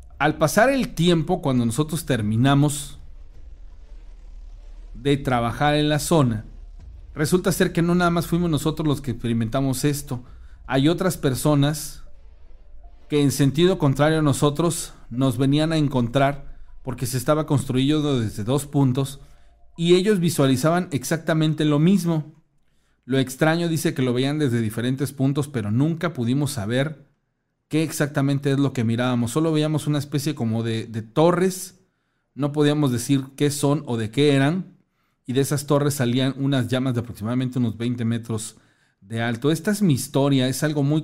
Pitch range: 120-150 Hz